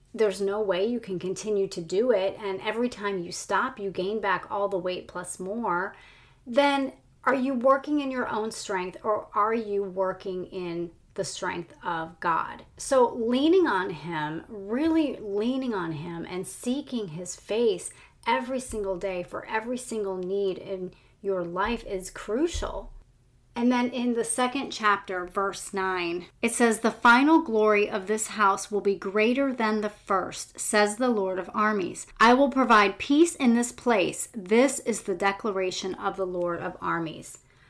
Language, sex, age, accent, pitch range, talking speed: English, female, 30-49, American, 190-240 Hz, 170 wpm